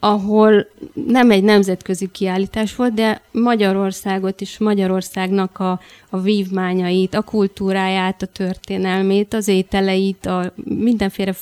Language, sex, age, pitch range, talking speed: Hungarian, female, 30-49, 185-205 Hz, 110 wpm